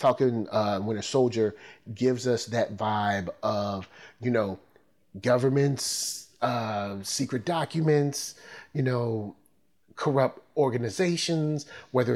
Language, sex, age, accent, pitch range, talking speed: English, male, 30-49, American, 110-130 Hz, 105 wpm